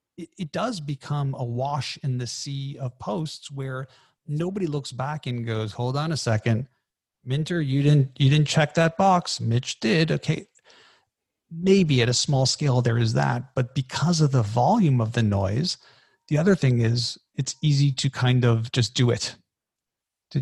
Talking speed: 175 wpm